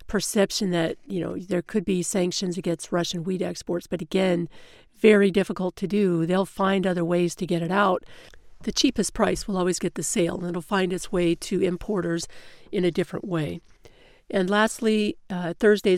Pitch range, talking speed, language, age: 175-200 Hz, 180 wpm, English, 50-69